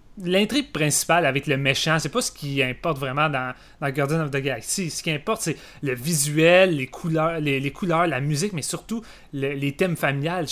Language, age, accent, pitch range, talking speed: French, 30-49, Canadian, 140-175 Hz, 210 wpm